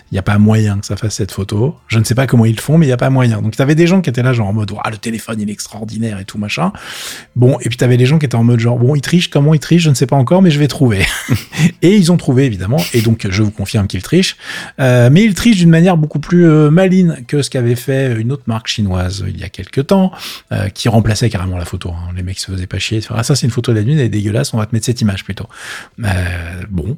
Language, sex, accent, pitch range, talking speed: French, male, French, 105-140 Hz, 310 wpm